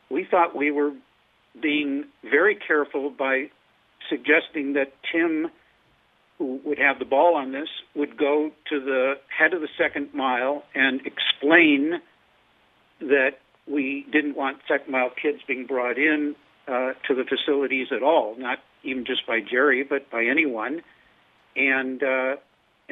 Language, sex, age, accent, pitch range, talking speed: English, male, 60-79, American, 130-155 Hz, 140 wpm